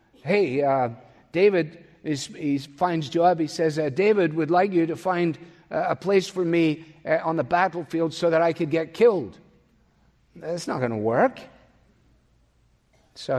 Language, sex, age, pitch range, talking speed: English, male, 50-69, 145-190 Hz, 160 wpm